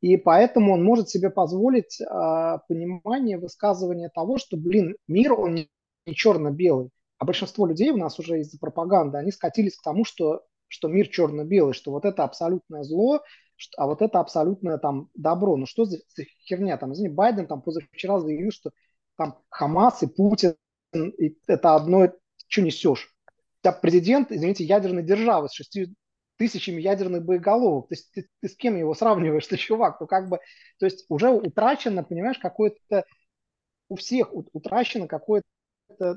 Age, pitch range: 30-49, 160-210 Hz